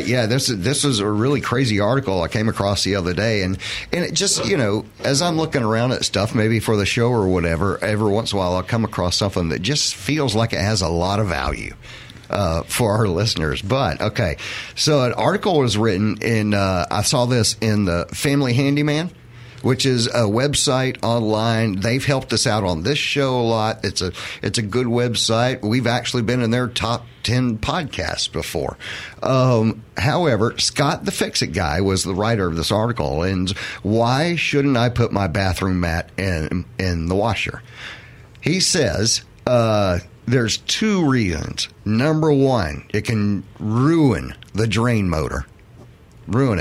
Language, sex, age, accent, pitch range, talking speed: English, male, 50-69, American, 100-125 Hz, 180 wpm